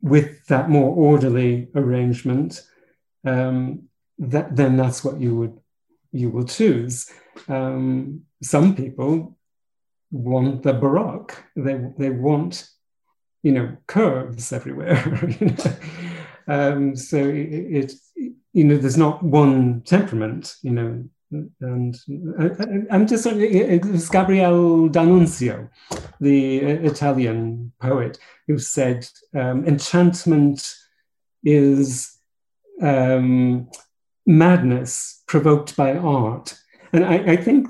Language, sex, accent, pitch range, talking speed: English, male, British, 130-175 Hz, 100 wpm